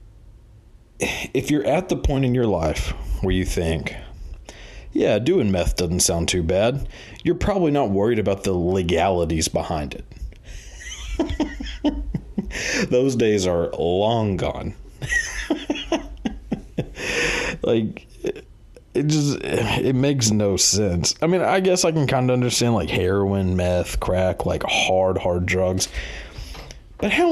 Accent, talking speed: American, 125 wpm